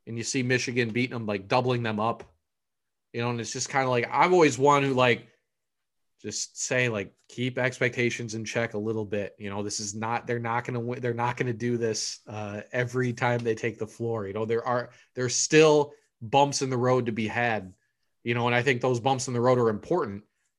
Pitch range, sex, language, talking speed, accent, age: 105-125 Hz, male, English, 240 wpm, American, 30-49